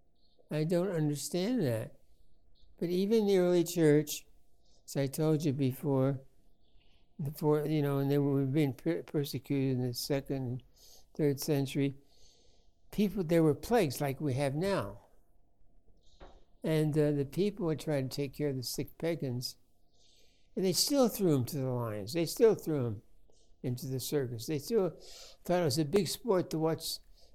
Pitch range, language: 130-165 Hz, English